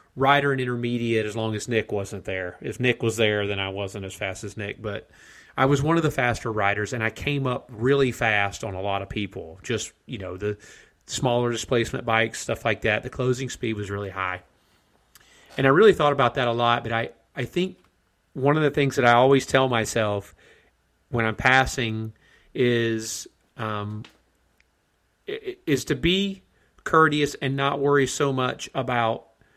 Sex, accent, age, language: male, American, 30-49, English